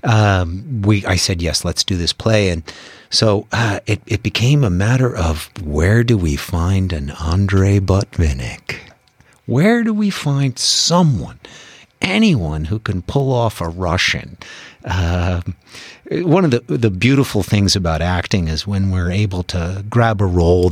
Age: 50-69